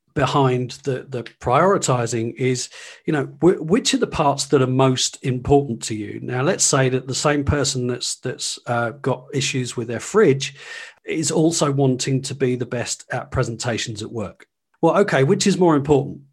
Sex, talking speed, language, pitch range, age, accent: male, 185 wpm, English, 120-150 Hz, 40-59, British